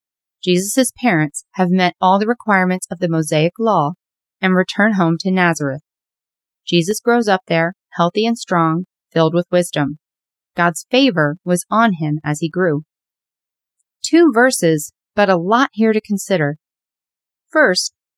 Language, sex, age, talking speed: English, female, 30-49, 140 wpm